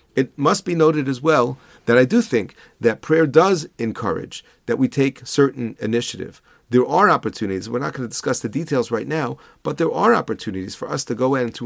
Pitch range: 120-160 Hz